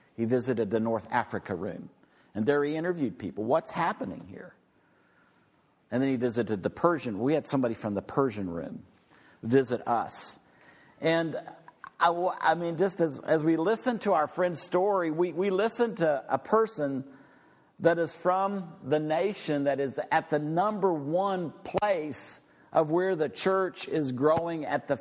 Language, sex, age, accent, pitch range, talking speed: English, male, 50-69, American, 135-185 Hz, 165 wpm